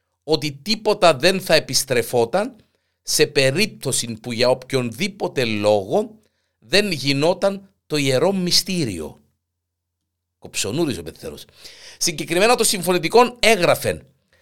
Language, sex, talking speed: Greek, male, 95 wpm